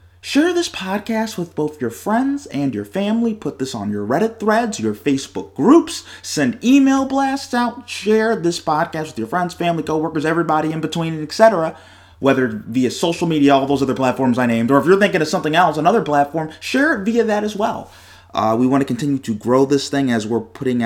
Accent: American